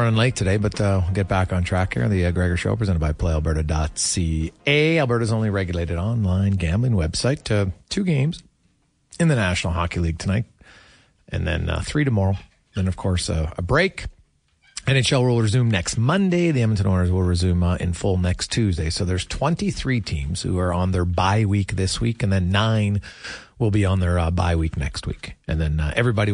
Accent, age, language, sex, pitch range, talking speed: American, 40-59, English, male, 90-115 Hz, 200 wpm